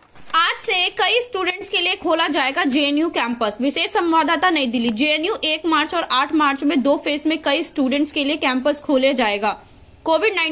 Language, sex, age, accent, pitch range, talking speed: Indonesian, female, 20-39, Indian, 265-320 Hz, 175 wpm